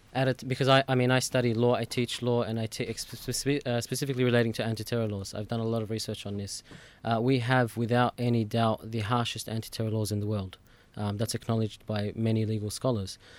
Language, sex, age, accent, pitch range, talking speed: English, male, 20-39, Australian, 110-125 Hz, 205 wpm